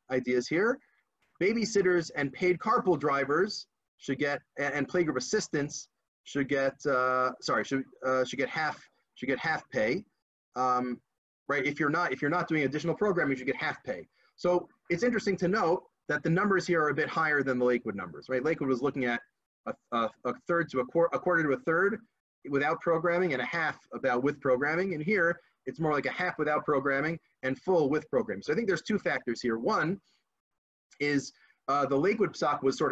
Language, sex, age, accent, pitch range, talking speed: English, male, 30-49, American, 135-175 Hz, 200 wpm